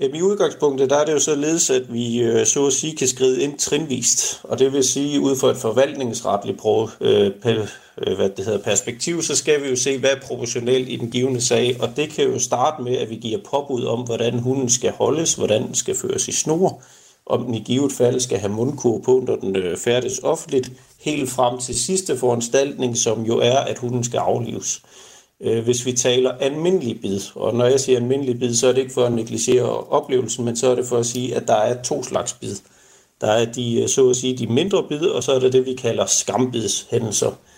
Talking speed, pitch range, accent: 210 wpm, 120-140 Hz, native